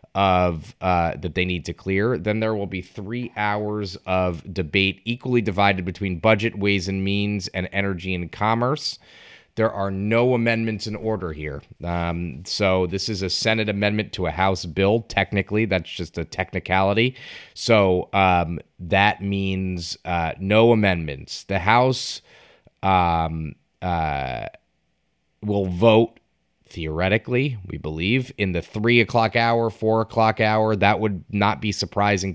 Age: 30-49